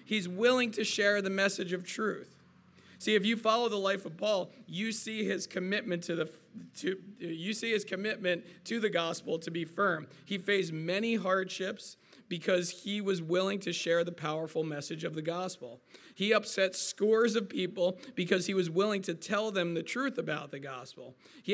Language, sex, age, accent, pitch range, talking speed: English, male, 40-59, American, 170-210 Hz, 170 wpm